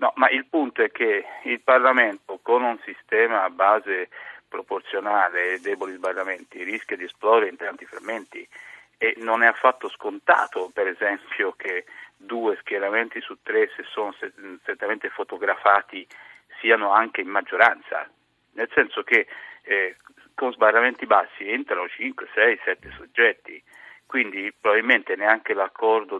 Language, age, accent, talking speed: Italian, 50-69, native, 135 wpm